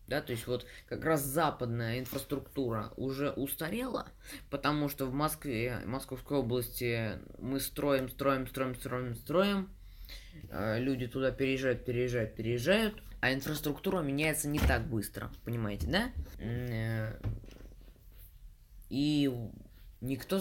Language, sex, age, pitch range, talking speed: Russian, female, 20-39, 110-145 Hz, 115 wpm